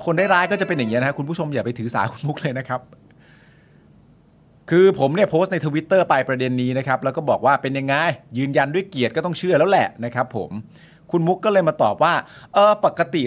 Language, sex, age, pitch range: Thai, male, 30-49, 125-170 Hz